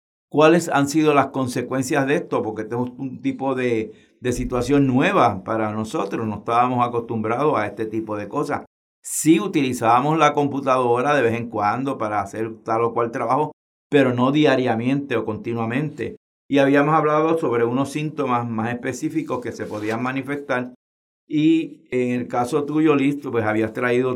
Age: 60-79